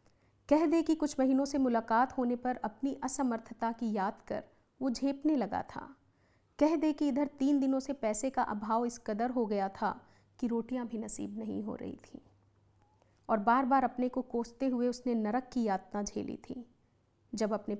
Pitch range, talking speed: 200-260 Hz, 190 wpm